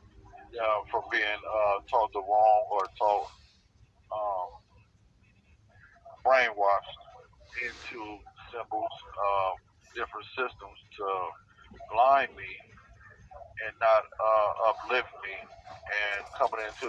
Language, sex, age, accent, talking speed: English, male, 50-69, American, 100 wpm